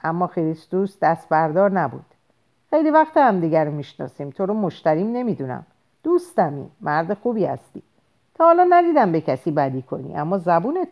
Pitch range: 155-245 Hz